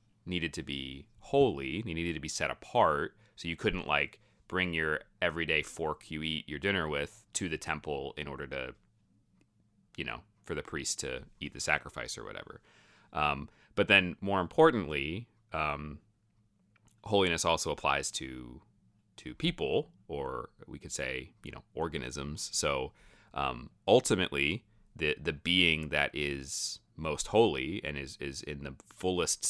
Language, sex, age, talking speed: English, male, 30-49, 155 wpm